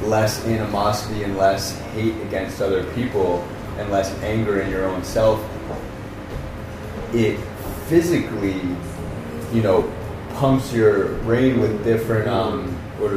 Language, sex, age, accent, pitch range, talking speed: English, male, 30-49, American, 100-115 Hz, 125 wpm